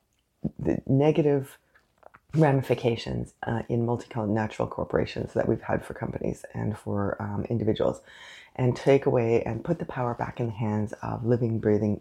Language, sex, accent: English, female, American